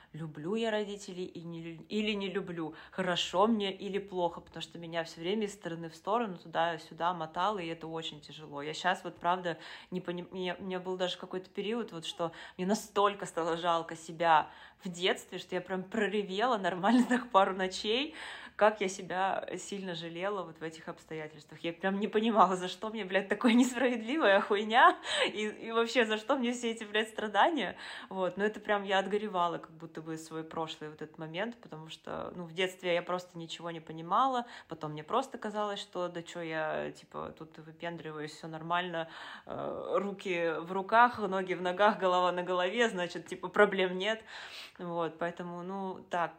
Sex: female